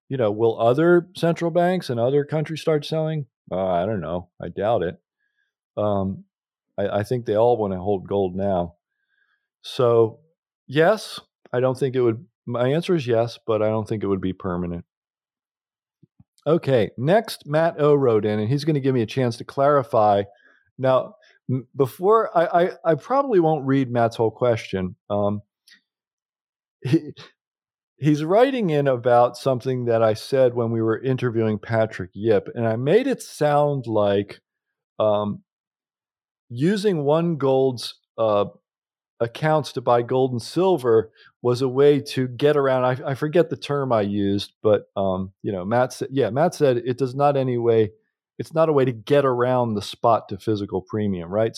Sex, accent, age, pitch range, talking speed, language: male, American, 50-69, 110-150 Hz, 170 wpm, English